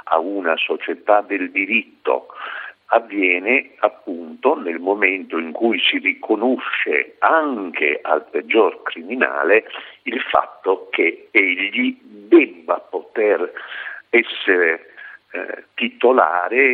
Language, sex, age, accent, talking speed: Italian, male, 50-69, native, 95 wpm